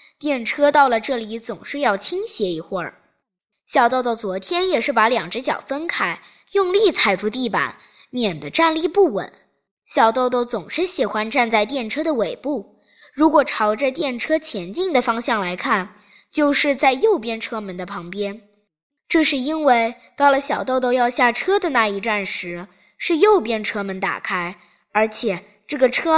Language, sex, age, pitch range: Chinese, female, 20-39, 205-300 Hz